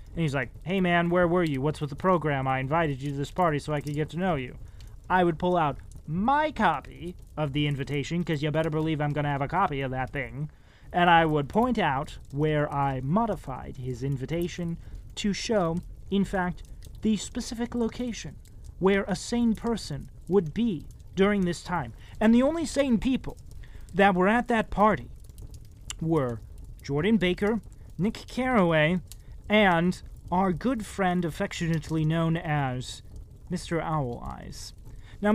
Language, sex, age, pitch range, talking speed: English, male, 30-49, 140-190 Hz, 165 wpm